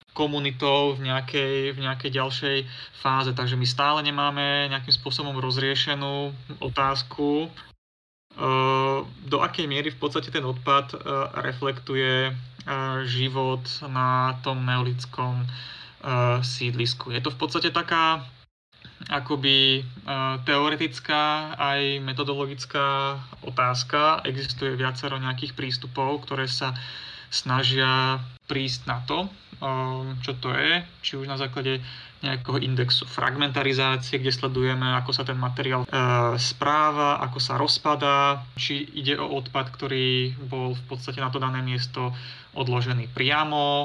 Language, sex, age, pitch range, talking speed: Slovak, male, 30-49, 130-140 Hz, 110 wpm